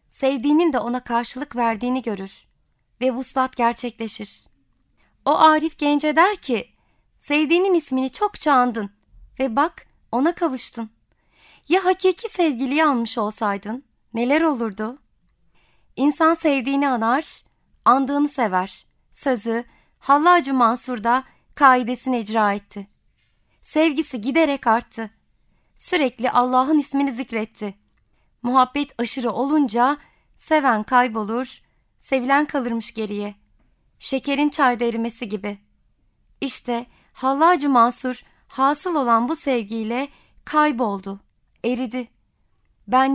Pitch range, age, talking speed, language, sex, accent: 235-290 Hz, 30-49, 95 wpm, Turkish, female, native